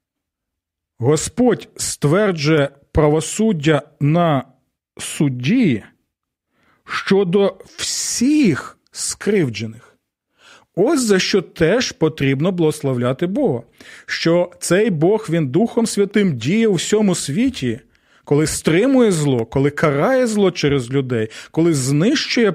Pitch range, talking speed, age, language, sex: 130-175 Hz, 95 wpm, 40-59, Ukrainian, male